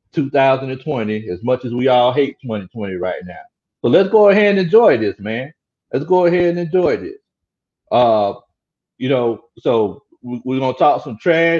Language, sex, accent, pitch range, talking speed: English, male, American, 120-170 Hz, 175 wpm